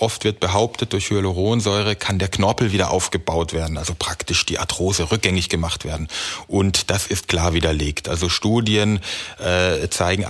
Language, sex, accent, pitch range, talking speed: German, male, German, 90-115 Hz, 155 wpm